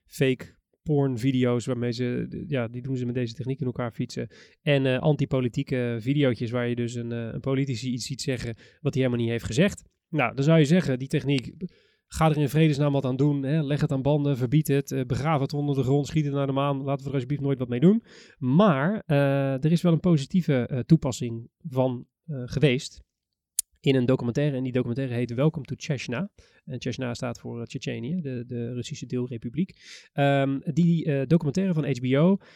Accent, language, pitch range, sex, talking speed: Dutch, Dutch, 130-155 Hz, male, 200 wpm